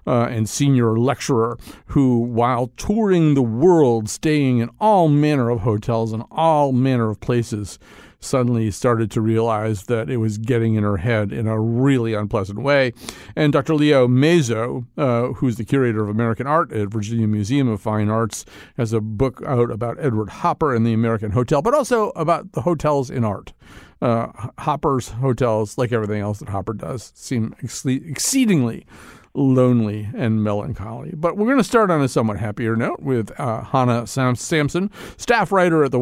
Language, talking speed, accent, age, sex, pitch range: English, 175 wpm, American, 50-69, male, 115-140 Hz